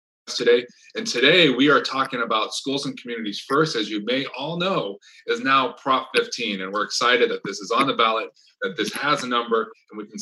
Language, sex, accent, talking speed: English, male, American, 215 wpm